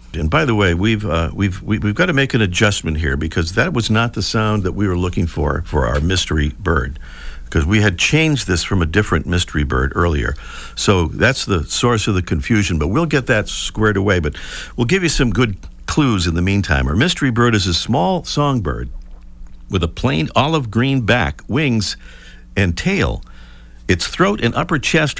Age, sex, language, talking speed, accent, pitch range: 50-69, male, English, 200 wpm, American, 80-115 Hz